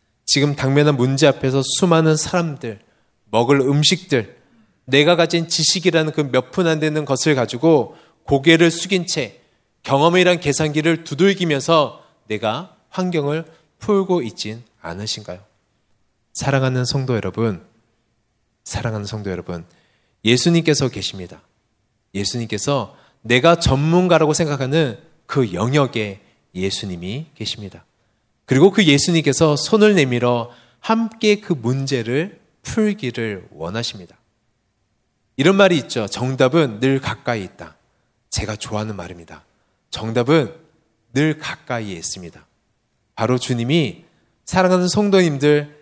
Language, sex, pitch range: Korean, male, 110-160 Hz